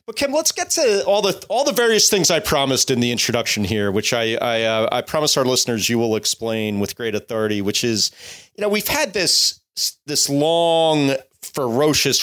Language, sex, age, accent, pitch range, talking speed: English, male, 30-49, American, 115-165 Hz, 200 wpm